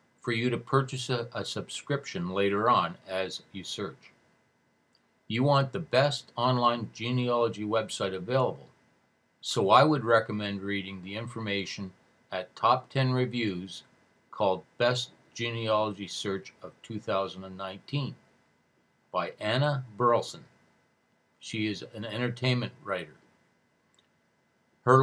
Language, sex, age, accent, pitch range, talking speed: English, male, 60-79, American, 100-130 Hz, 110 wpm